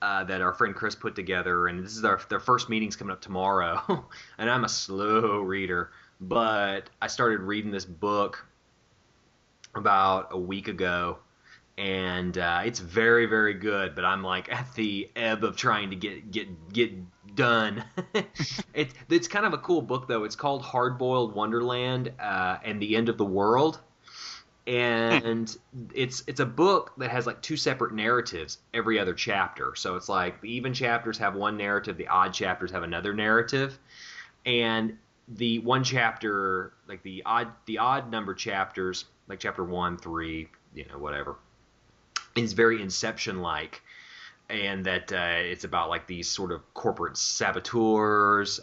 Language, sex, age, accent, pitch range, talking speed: English, male, 20-39, American, 95-120 Hz, 165 wpm